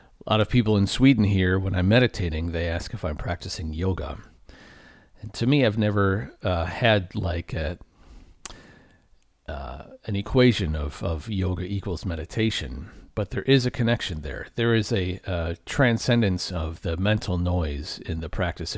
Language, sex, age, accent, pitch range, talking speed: English, male, 40-59, American, 80-100 Hz, 165 wpm